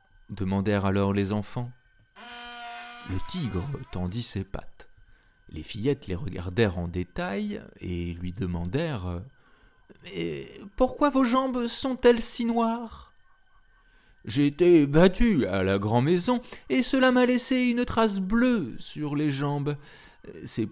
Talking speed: 125 wpm